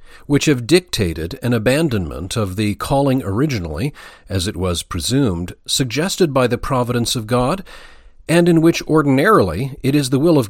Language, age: English, 40-59